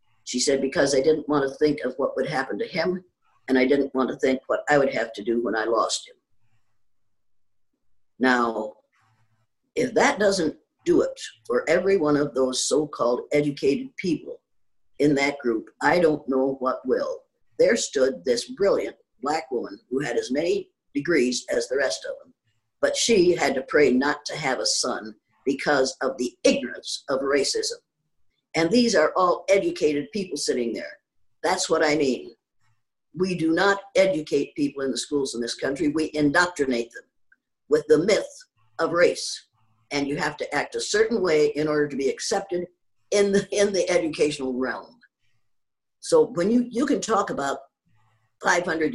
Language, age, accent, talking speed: English, 50-69, American, 175 wpm